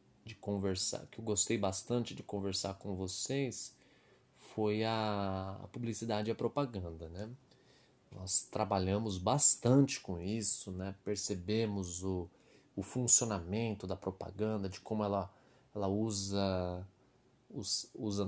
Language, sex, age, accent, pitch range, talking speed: Portuguese, male, 20-39, Brazilian, 95-110 Hz, 110 wpm